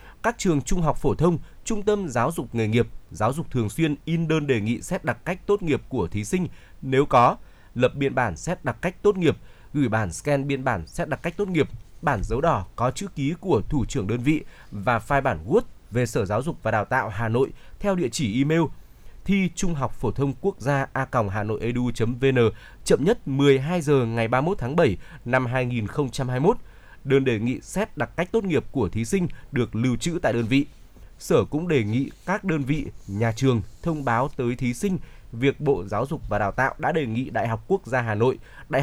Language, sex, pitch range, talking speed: Vietnamese, male, 115-155 Hz, 225 wpm